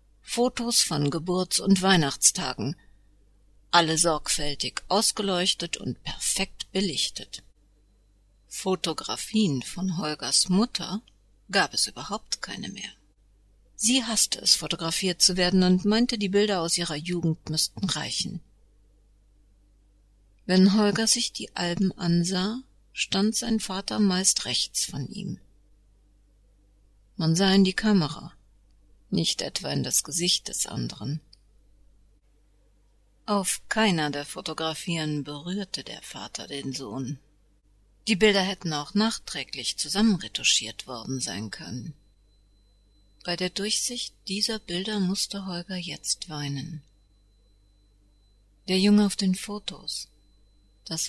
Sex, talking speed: female, 110 wpm